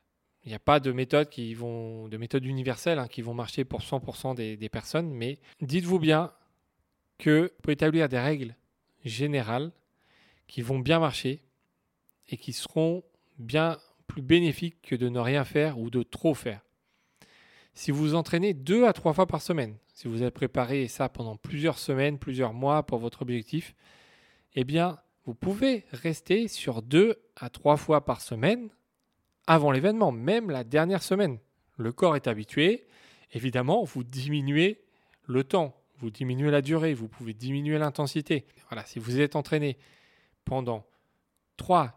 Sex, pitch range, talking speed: male, 125-160 Hz, 155 wpm